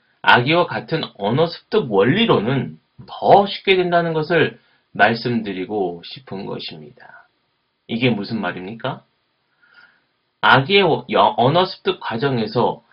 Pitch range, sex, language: 120-170 Hz, male, Korean